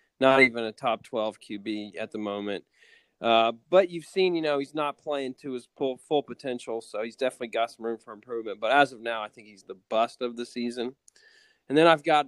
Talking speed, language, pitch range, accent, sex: 230 wpm, English, 115-145 Hz, American, male